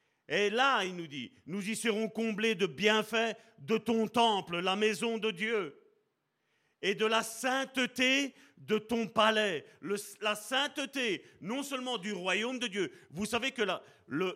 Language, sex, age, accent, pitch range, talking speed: French, male, 40-59, French, 200-245 Hz, 165 wpm